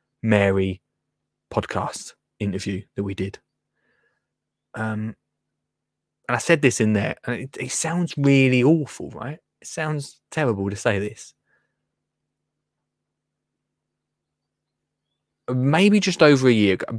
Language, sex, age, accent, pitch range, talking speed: English, male, 20-39, British, 110-160 Hz, 115 wpm